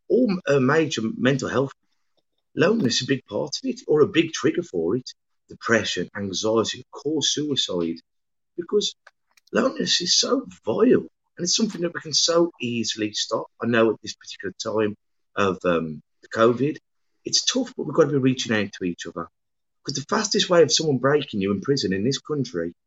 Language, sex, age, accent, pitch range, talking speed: English, male, 30-49, British, 105-145 Hz, 180 wpm